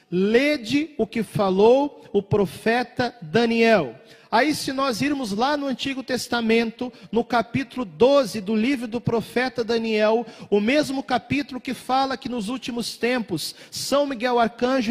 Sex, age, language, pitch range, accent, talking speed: male, 40-59, Portuguese, 180-245 Hz, Brazilian, 140 wpm